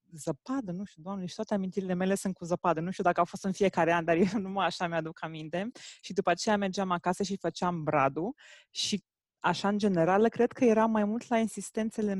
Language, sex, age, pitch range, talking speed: Romanian, female, 20-39, 165-205 Hz, 215 wpm